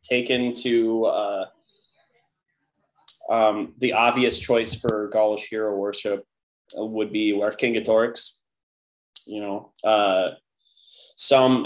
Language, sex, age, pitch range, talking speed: English, male, 20-39, 100-120 Hz, 100 wpm